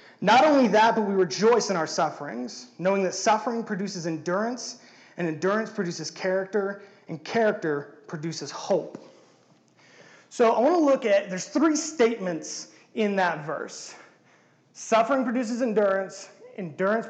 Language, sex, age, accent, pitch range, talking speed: English, male, 30-49, American, 170-230 Hz, 135 wpm